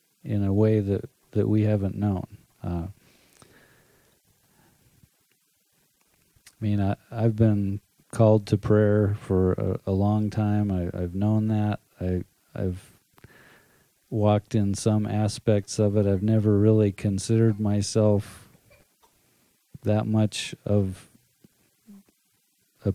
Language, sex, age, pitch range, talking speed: English, male, 40-59, 95-110 Hz, 110 wpm